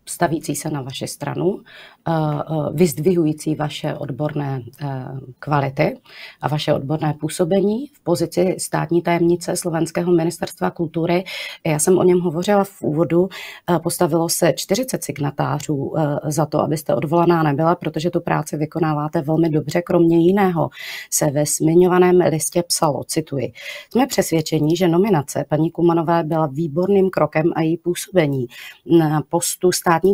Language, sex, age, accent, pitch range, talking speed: Czech, female, 30-49, native, 150-175 Hz, 130 wpm